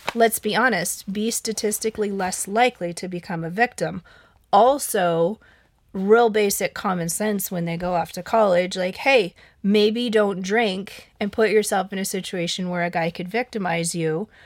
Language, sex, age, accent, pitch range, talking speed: English, female, 30-49, American, 175-210 Hz, 160 wpm